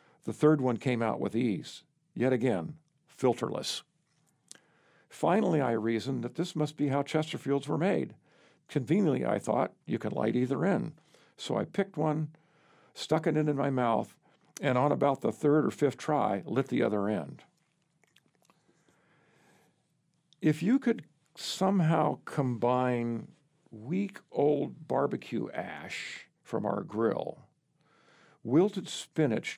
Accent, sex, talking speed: American, male, 130 wpm